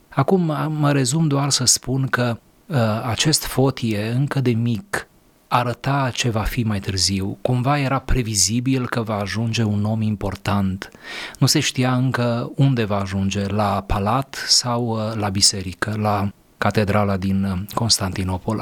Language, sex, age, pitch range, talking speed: Romanian, male, 30-49, 105-130 Hz, 140 wpm